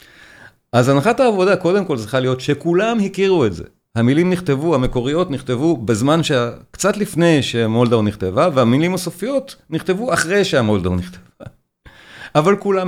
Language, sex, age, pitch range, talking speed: Hebrew, male, 40-59, 110-165 Hz, 135 wpm